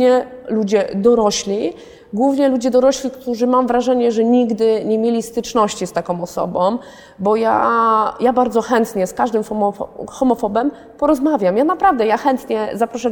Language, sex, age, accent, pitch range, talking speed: Polish, female, 20-39, native, 210-255 Hz, 135 wpm